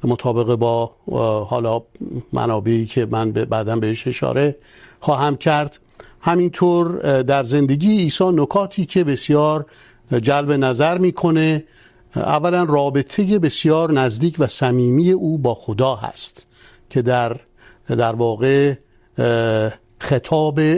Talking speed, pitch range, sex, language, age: 105 wpm, 120-145 Hz, male, Urdu, 50-69